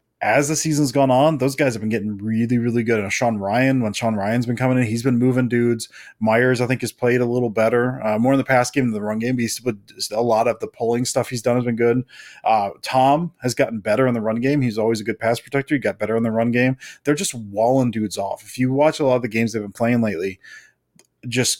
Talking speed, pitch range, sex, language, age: 270 wpm, 115-135 Hz, male, English, 20-39